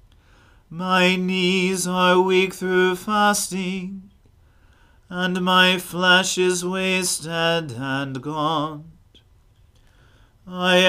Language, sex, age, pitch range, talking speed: English, male, 40-59, 135-185 Hz, 75 wpm